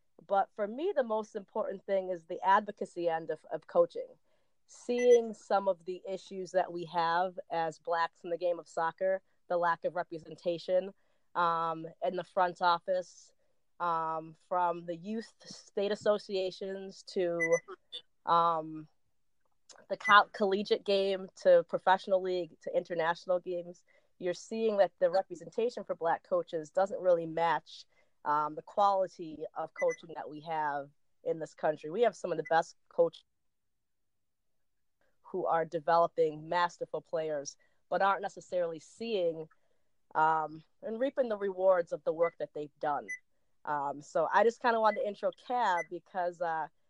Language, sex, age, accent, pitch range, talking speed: English, female, 30-49, American, 165-205 Hz, 150 wpm